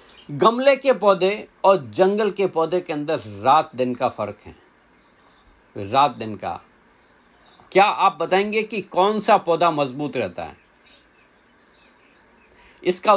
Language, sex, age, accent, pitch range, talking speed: Hindi, male, 50-69, native, 145-205 Hz, 130 wpm